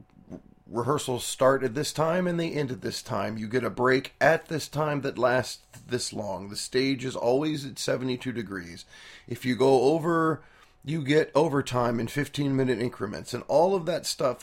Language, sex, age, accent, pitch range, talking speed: English, male, 30-49, American, 105-145 Hz, 185 wpm